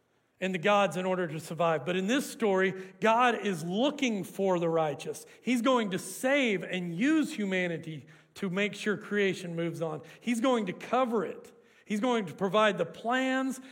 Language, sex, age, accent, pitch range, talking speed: English, male, 40-59, American, 170-225 Hz, 180 wpm